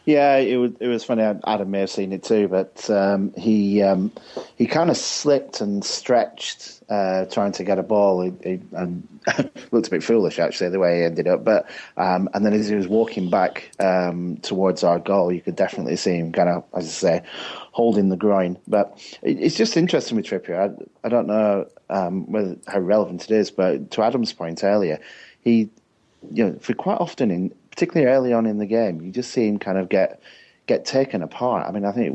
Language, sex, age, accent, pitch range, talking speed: English, male, 30-49, British, 90-110 Hz, 220 wpm